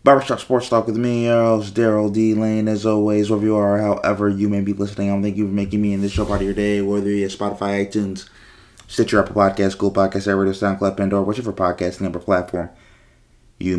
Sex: male